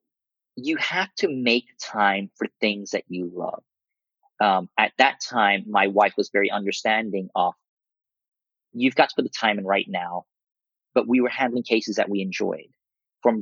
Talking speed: 170 wpm